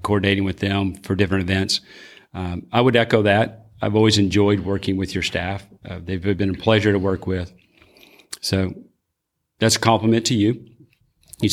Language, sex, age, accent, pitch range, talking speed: English, male, 40-59, American, 95-110 Hz, 170 wpm